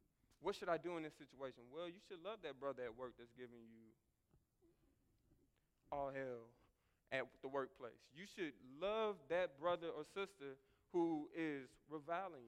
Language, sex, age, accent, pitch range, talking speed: English, male, 20-39, American, 140-195 Hz, 160 wpm